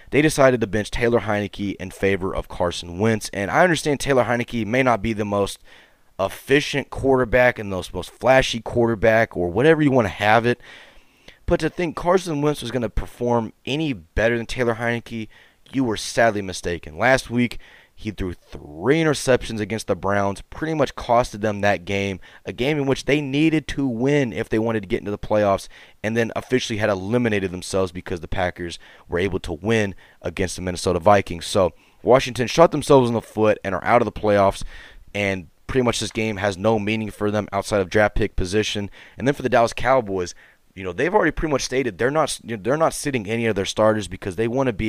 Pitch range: 100-120 Hz